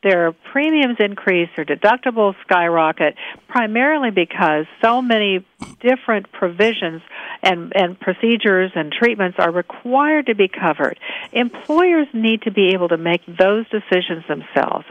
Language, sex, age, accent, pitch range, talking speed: English, female, 50-69, American, 175-240 Hz, 130 wpm